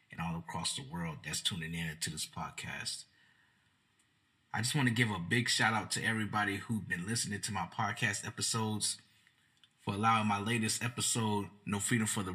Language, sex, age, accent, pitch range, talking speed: English, male, 20-39, American, 100-120 Hz, 180 wpm